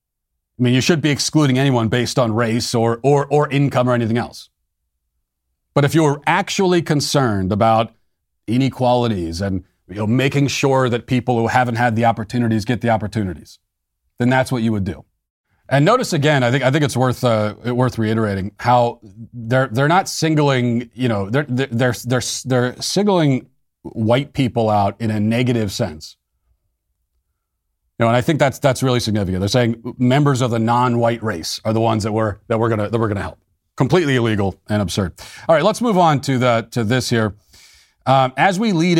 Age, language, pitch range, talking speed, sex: 40-59, English, 105-130 Hz, 185 wpm, male